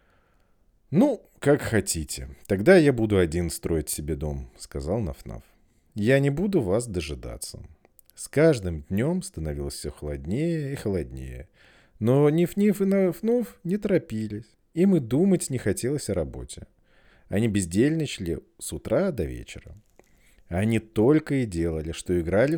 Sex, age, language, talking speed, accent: male, 40-59, Russian, 135 wpm, native